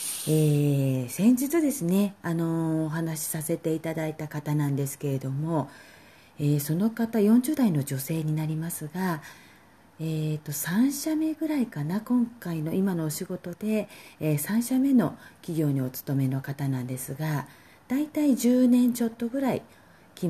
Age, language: 40-59, Japanese